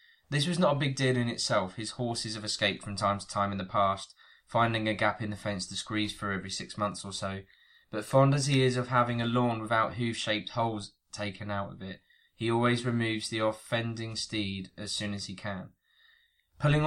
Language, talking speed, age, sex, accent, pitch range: English, 215 wpm, 20-39, male, British, 105-125 Hz